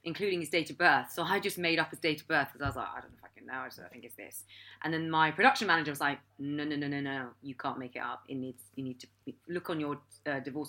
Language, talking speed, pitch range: English, 325 wpm, 150-215 Hz